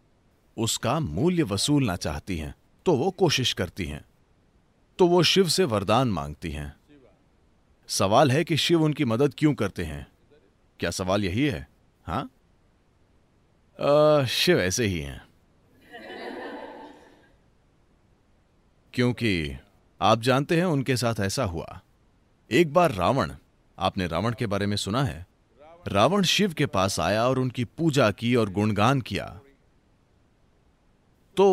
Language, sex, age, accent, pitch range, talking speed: English, male, 30-49, Indian, 90-140 Hz, 120 wpm